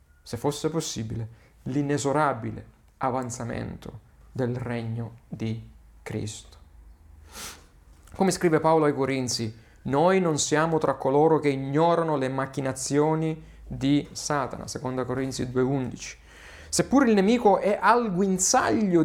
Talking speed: 105 wpm